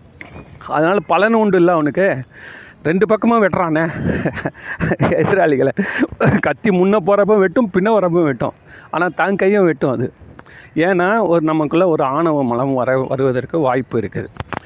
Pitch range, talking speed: 140-190 Hz, 125 wpm